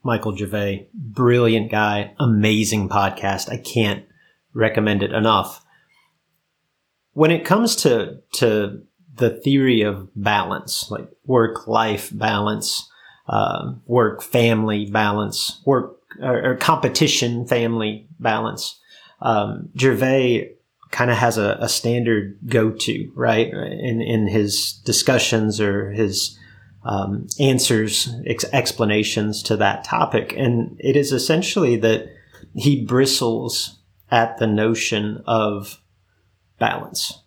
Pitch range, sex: 105-120 Hz, male